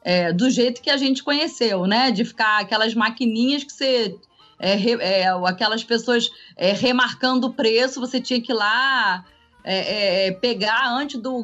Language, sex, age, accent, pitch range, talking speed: Portuguese, female, 20-39, Brazilian, 200-260 Hz, 175 wpm